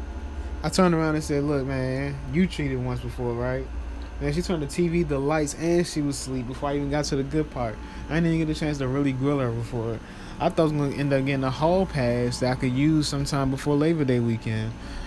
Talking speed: 245 wpm